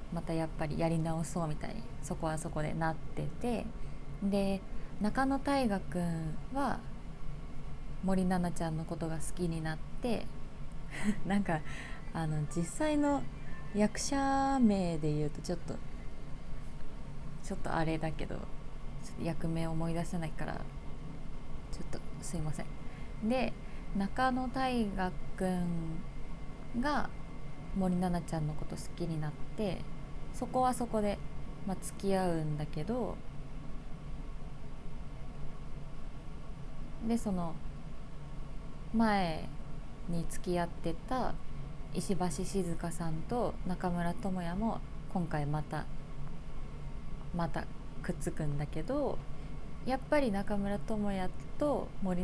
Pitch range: 160-210 Hz